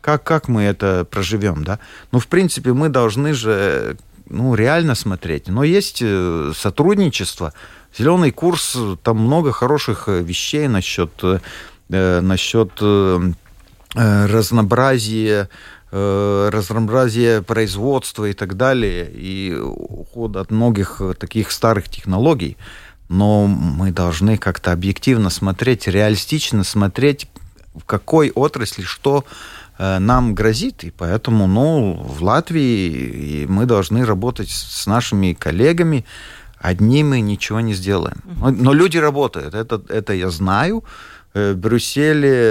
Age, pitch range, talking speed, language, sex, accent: 40-59, 95-120 Hz, 115 wpm, Russian, male, native